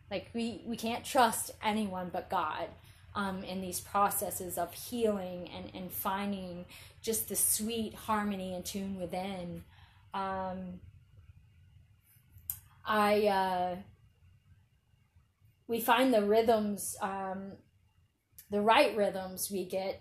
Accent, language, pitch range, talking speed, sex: American, English, 180-215 Hz, 110 wpm, female